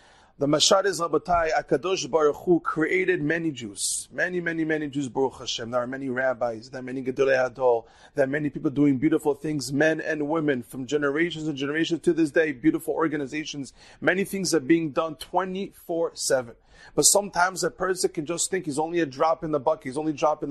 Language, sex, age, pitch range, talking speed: English, male, 30-49, 150-195 Hz, 200 wpm